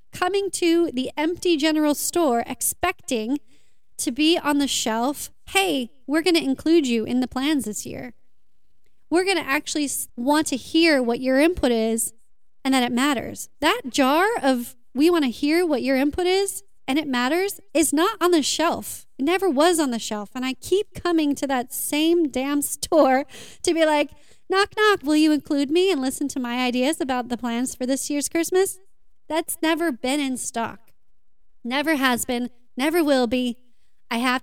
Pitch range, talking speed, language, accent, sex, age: 250-320 Hz, 185 wpm, English, American, female, 30-49